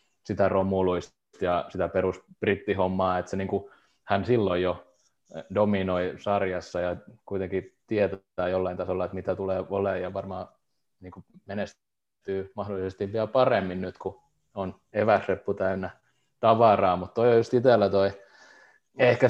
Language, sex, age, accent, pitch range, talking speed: Finnish, male, 20-39, native, 95-105 Hz, 135 wpm